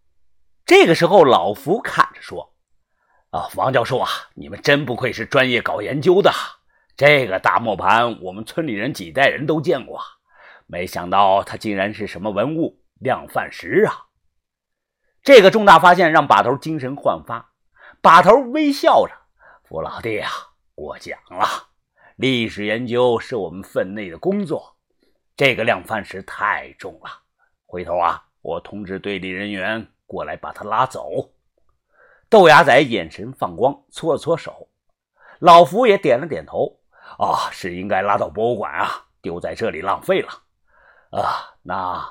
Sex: male